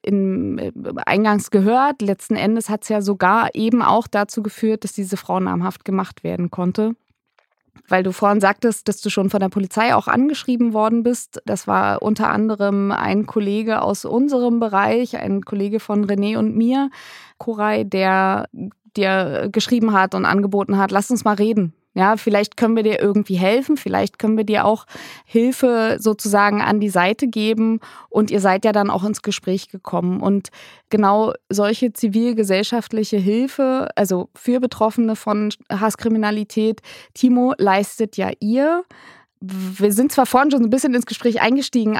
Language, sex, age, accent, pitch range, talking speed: German, female, 20-39, German, 200-230 Hz, 160 wpm